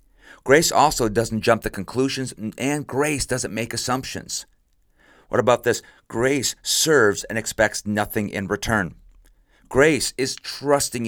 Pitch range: 100-125 Hz